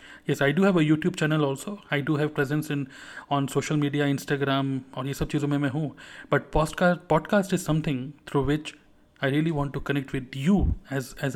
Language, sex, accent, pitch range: Hindi, male, native, 140-160 Hz